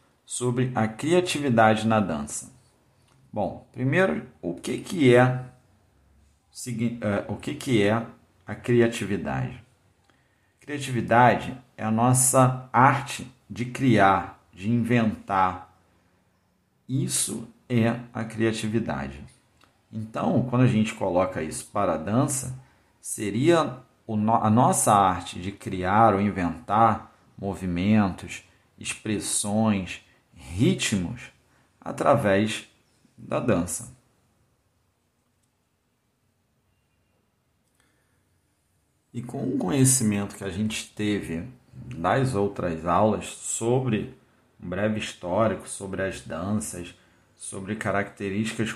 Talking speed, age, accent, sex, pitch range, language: 90 wpm, 40-59, Brazilian, male, 100-125 Hz, Portuguese